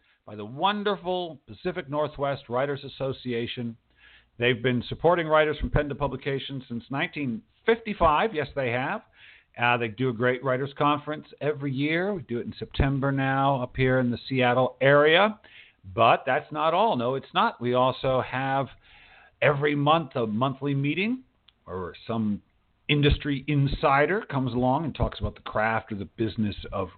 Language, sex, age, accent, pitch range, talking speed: English, male, 50-69, American, 120-170 Hz, 160 wpm